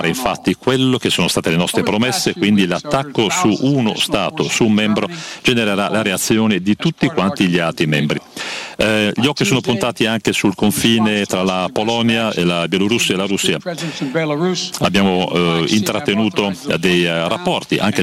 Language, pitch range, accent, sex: Italian, 95-120 Hz, native, male